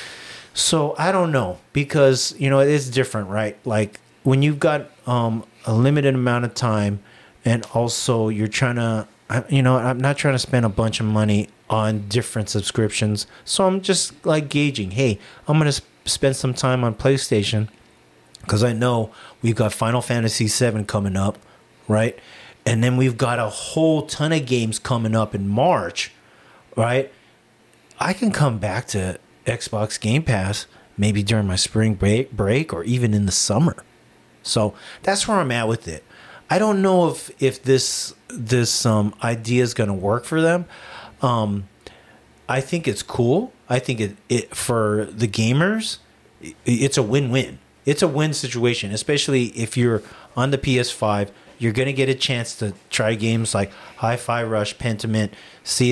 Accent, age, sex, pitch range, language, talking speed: American, 30-49, male, 105-135 Hz, English, 170 wpm